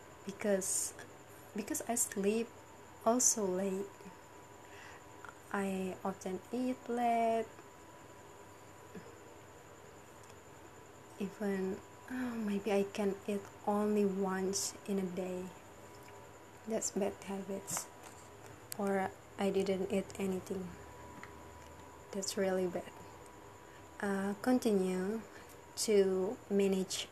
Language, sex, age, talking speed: English, female, 20-39, 75 wpm